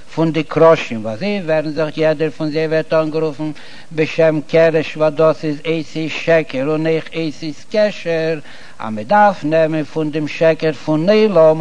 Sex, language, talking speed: male, Hebrew, 165 wpm